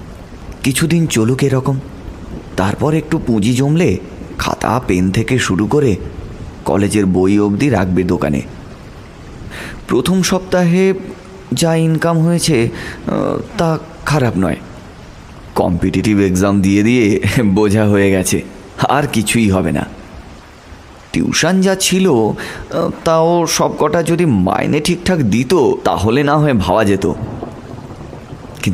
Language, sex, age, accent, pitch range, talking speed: Bengali, male, 30-49, native, 95-145 Hz, 85 wpm